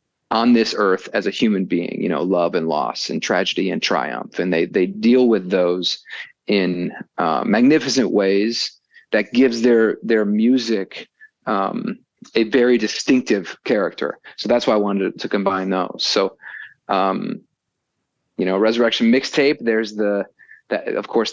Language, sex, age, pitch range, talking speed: English, male, 40-59, 100-125 Hz, 155 wpm